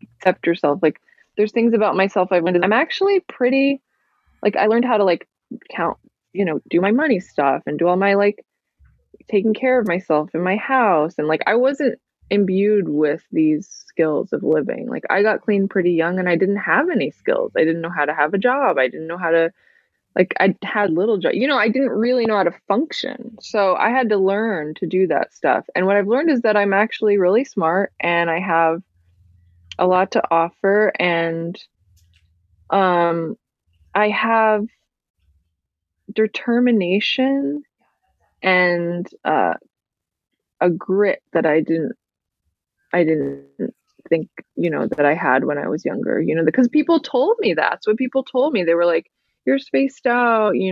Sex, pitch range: female, 165-225 Hz